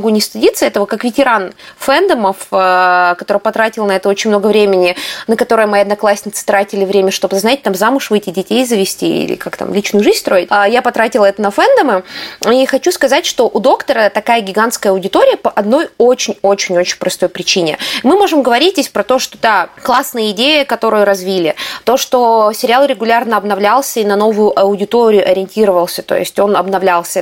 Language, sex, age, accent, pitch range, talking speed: Russian, female, 20-39, native, 195-245 Hz, 170 wpm